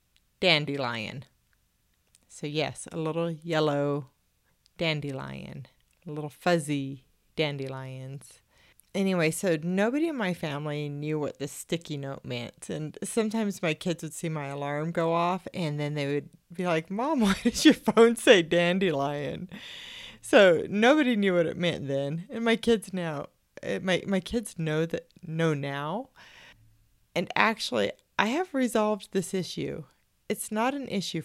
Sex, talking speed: female, 145 wpm